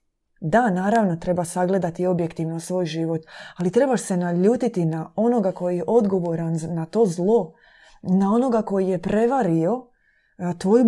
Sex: female